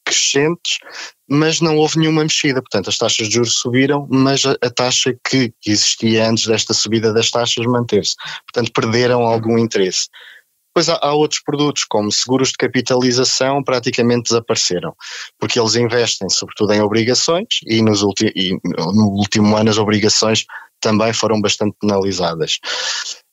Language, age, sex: Portuguese, 20-39, male